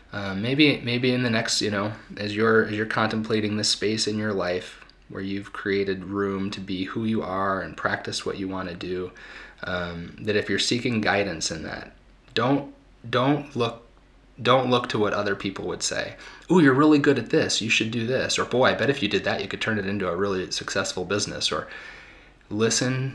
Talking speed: 215 wpm